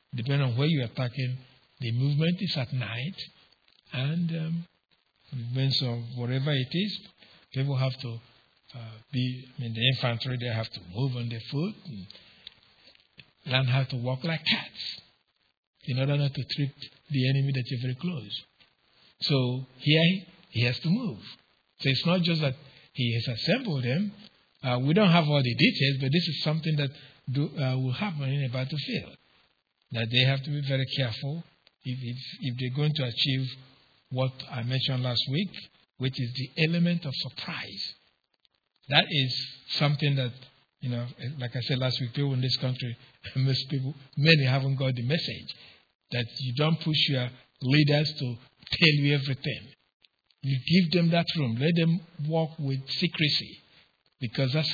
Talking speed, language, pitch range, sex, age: 170 wpm, English, 125-150 Hz, male, 60-79